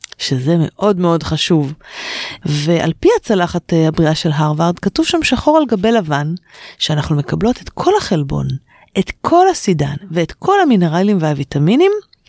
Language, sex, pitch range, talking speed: Hebrew, female, 170-250 Hz, 135 wpm